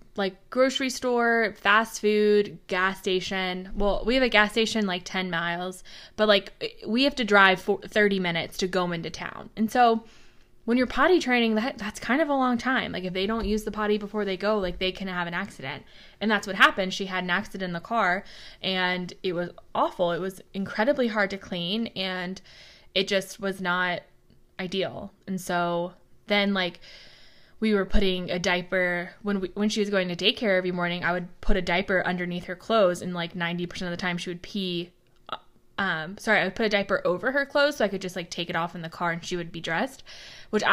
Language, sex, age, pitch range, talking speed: English, female, 20-39, 180-215 Hz, 220 wpm